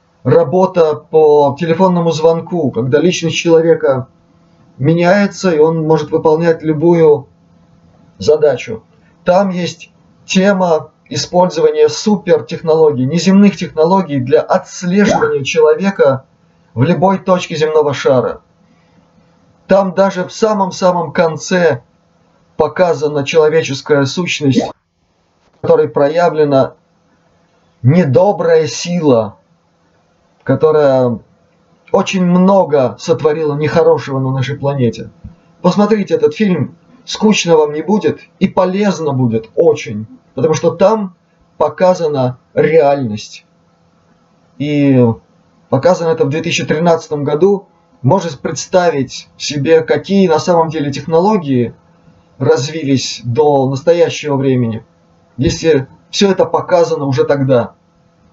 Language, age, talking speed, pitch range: Russian, 30-49, 95 wpm, 145-180 Hz